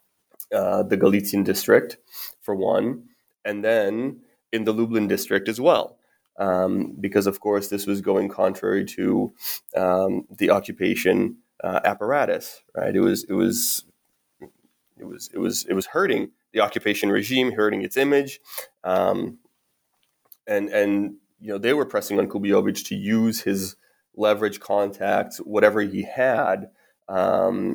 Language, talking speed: English, 140 wpm